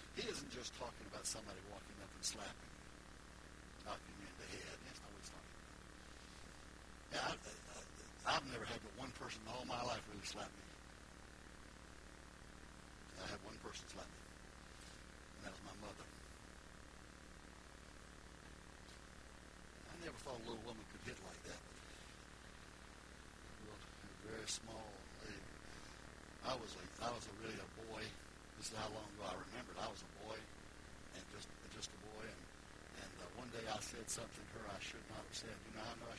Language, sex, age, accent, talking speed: English, male, 60-79, American, 180 wpm